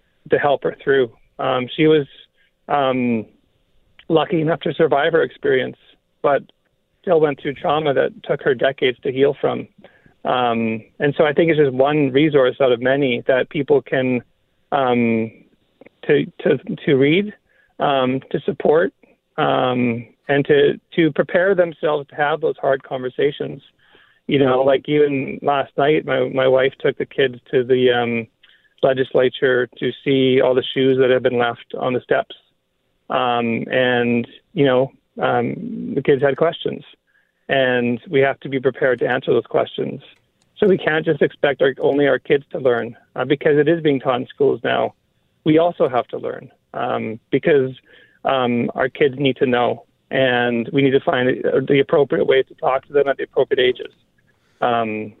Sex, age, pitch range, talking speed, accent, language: male, 40-59, 125-165 Hz, 170 wpm, American, English